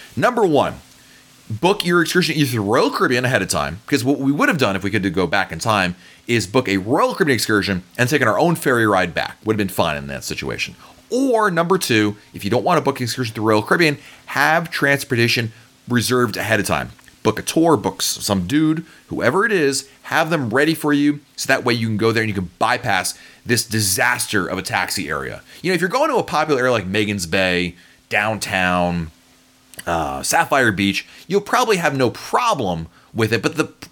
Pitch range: 100-140 Hz